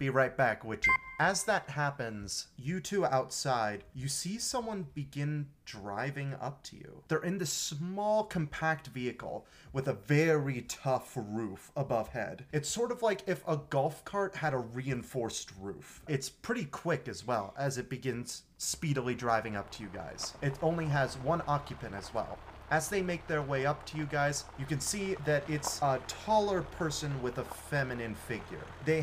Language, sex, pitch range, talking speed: English, male, 115-155 Hz, 180 wpm